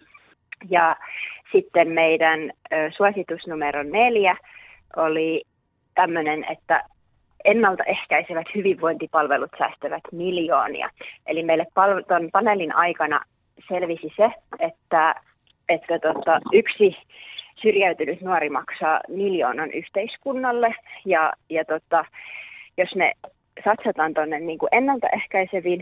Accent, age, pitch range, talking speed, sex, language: native, 30-49, 155-200 Hz, 95 wpm, female, Finnish